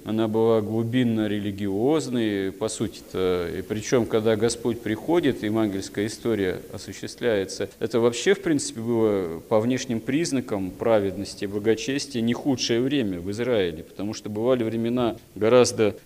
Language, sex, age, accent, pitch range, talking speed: Russian, male, 40-59, native, 105-130 Hz, 130 wpm